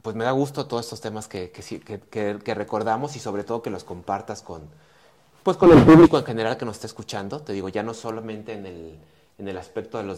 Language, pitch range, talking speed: Spanish, 100-125 Hz, 240 wpm